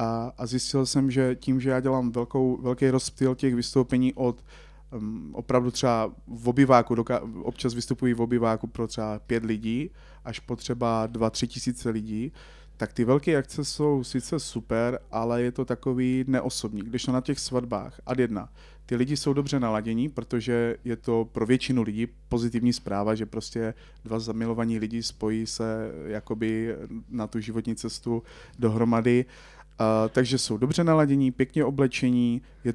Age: 30-49